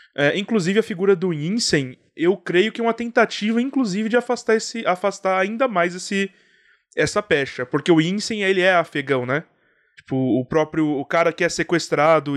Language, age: Portuguese, 20-39